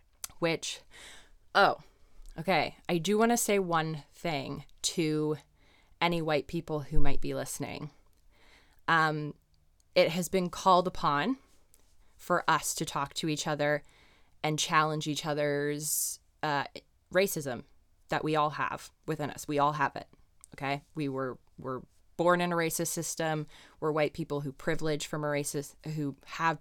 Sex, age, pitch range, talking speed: female, 20-39, 145-175 Hz, 150 wpm